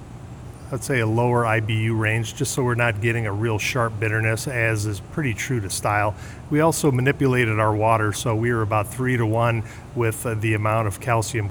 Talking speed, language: 200 wpm, English